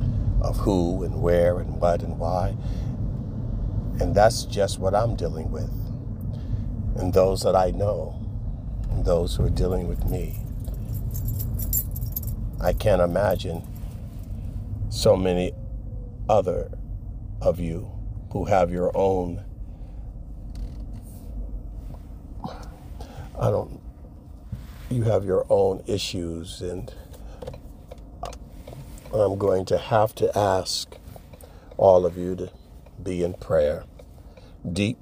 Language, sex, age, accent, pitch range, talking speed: English, male, 50-69, American, 85-110 Hz, 105 wpm